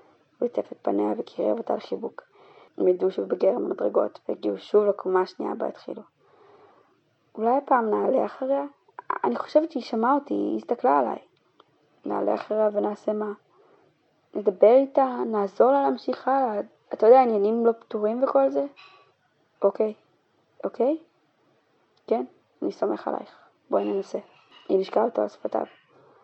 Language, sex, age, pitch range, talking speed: Hebrew, female, 20-39, 190-275 Hz, 135 wpm